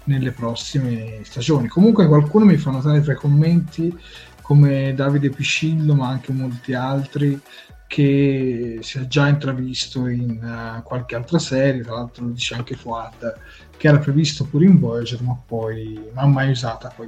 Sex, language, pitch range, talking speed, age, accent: male, Italian, 120-150 Hz, 165 wpm, 20-39, native